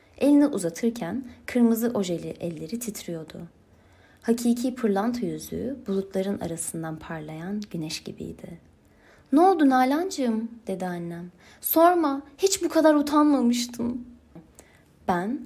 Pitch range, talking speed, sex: 180-255 Hz, 95 wpm, female